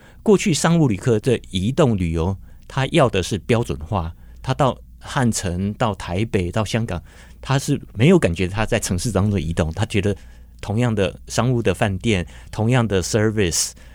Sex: male